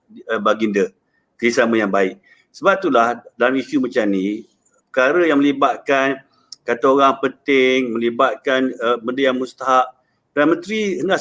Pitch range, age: 125-185 Hz, 50-69